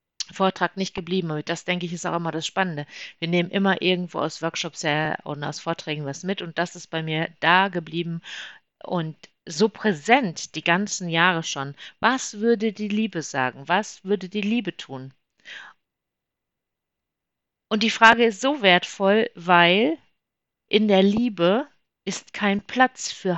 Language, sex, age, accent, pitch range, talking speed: German, female, 50-69, German, 160-210 Hz, 160 wpm